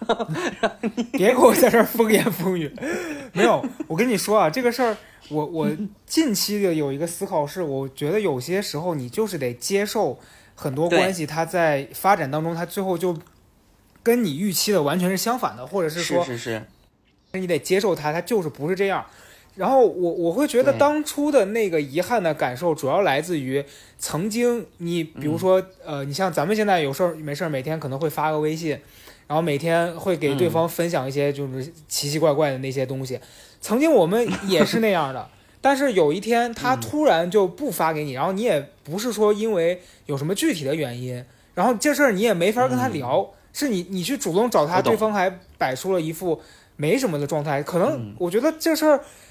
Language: Chinese